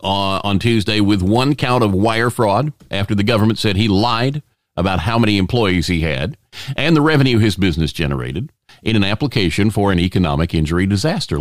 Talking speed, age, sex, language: 185 wpm, 50-69, male, English